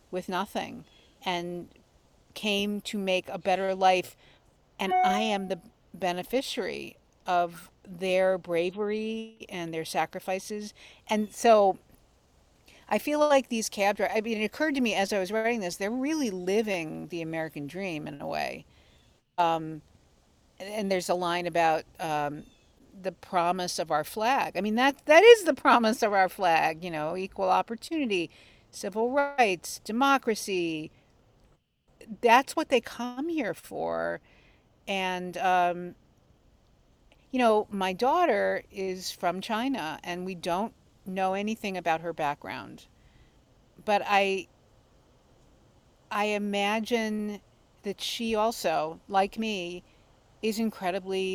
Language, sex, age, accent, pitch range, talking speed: English, female, 50-69, American, 175-215 Hz, 130 wpm